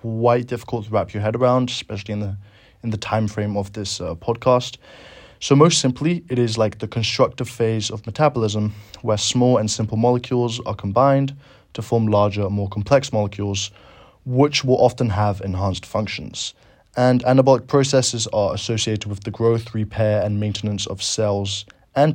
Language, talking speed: English, 170 wpm